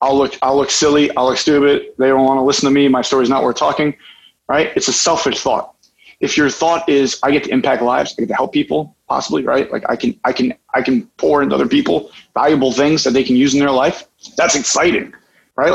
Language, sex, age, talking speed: English, male, 30-49, 245 wpm